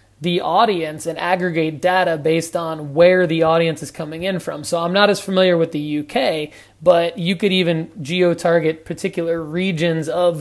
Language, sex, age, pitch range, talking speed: English, male, 30-49, 150-175 Hz, 175 wpm